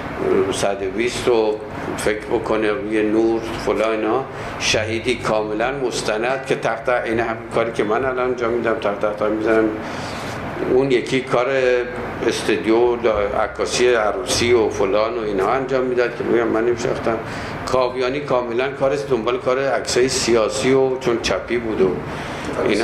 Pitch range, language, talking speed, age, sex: 100-130 Hz, Persian, 140 wpm, 50-69, male